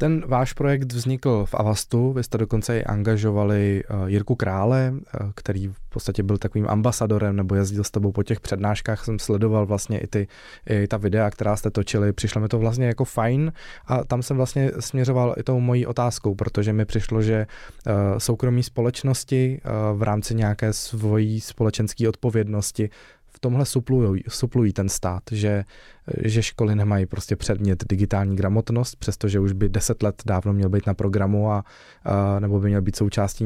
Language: Czech